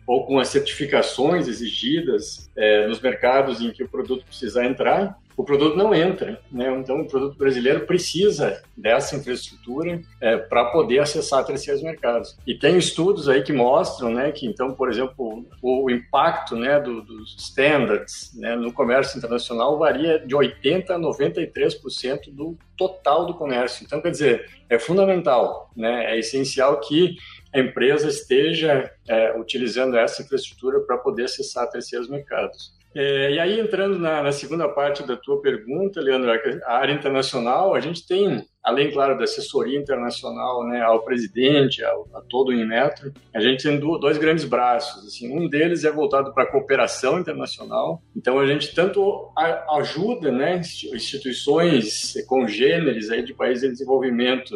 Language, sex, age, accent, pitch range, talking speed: Portuguese, male, 50-69, Brazilian, 125-175 Hz, 155 wpm